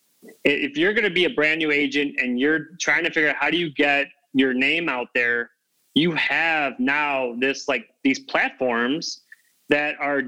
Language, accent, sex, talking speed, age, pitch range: English, American, male, 185 wpm, 30-49, 135-180 Hz